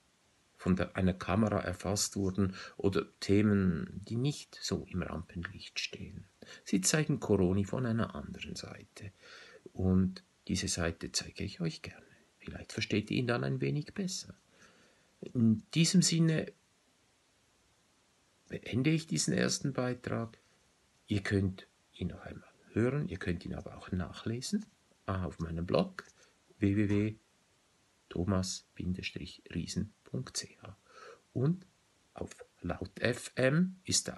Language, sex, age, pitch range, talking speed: German, male, 50-69, 90-125 Hz, 120 wpm